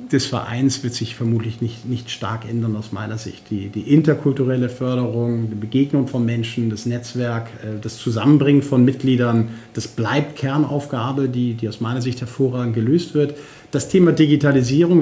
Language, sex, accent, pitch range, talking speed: German, male, German, 120-140 Hz, 160 wpm